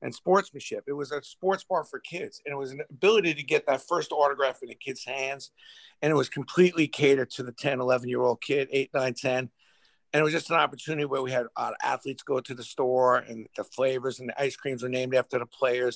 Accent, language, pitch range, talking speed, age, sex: American, English, 125-145 Hz, 245 wpm, 50-69, male